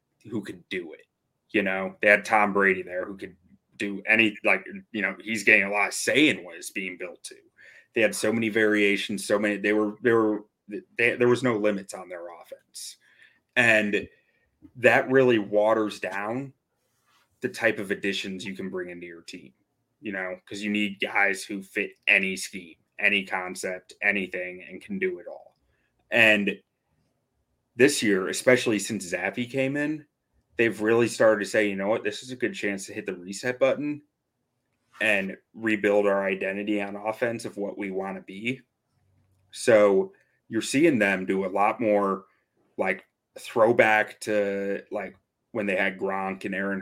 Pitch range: 95-120 Hz